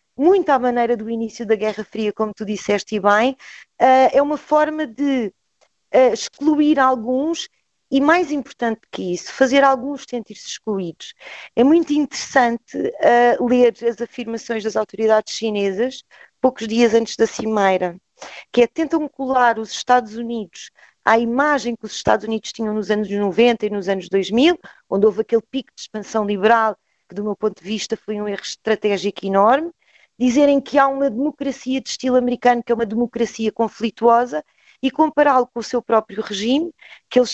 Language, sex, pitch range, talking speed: Portuguese, female, 215-270 Hz, 170 wpm